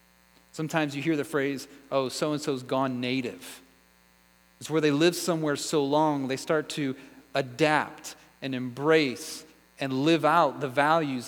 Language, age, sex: English, 30-49, male